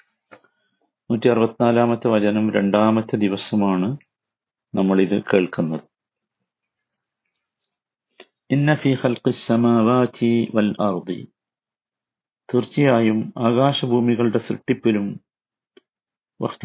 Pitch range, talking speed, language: 110-130 Hz, 35 wpm, Malayalam